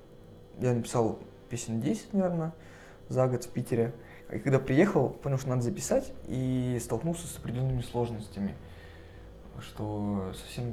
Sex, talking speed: male, 130 wpm